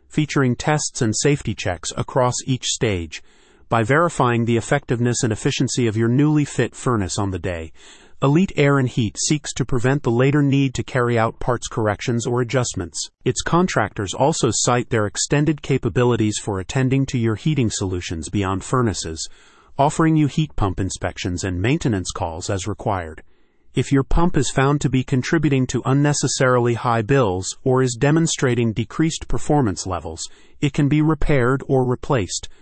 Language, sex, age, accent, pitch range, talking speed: English, male, 30-49, American, 110-140 Hz, 160 wpm